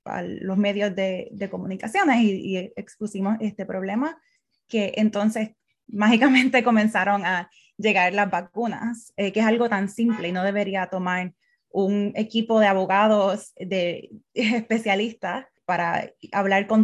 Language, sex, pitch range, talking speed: English, female, 190-225 Hz, 140 wpm